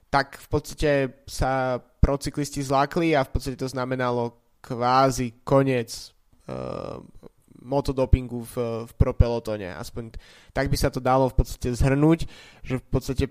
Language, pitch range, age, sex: Slovak, 125-140 Hz, 20-39, male